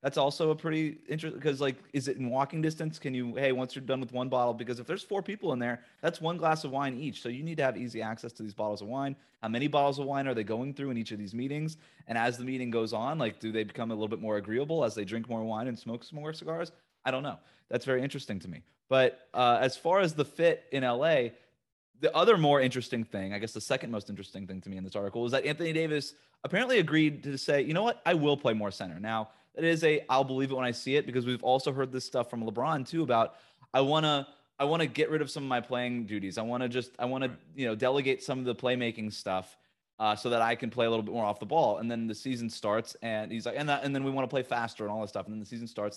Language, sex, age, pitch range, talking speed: English, male, 30-49, 110-145 Hz, 290 wpm